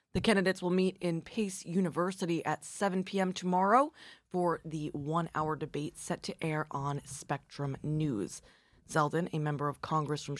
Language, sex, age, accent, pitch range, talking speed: English, female, 20-39, American, 150-180 Hz, 155 wpm